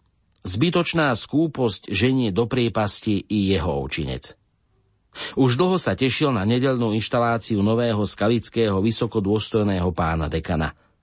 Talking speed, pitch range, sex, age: 110 wpm, 95-125 Hz, male, 50-69